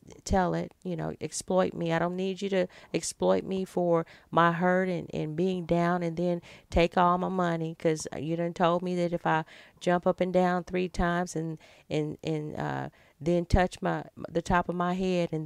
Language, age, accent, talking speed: English, 40-59, American, 205 wpm